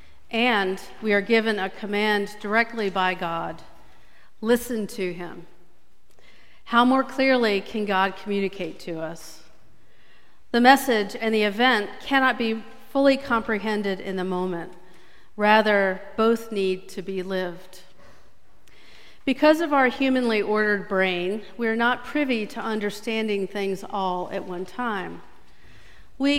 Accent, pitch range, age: American, 185-245 Hz, 50-69